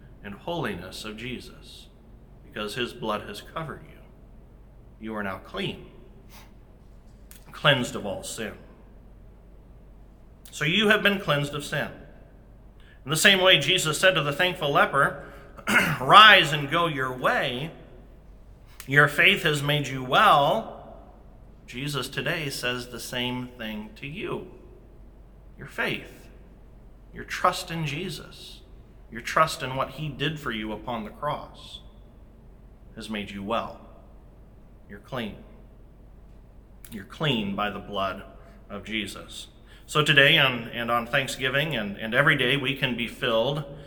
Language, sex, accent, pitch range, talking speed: English, male, American, 110-145 Hz, 135 wpm